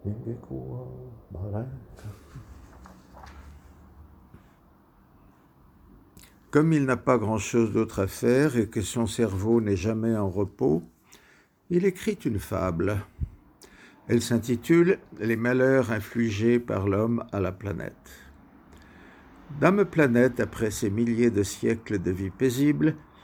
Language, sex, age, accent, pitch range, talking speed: French, male, 60-79, French, 95-120 Hz, 105 wpm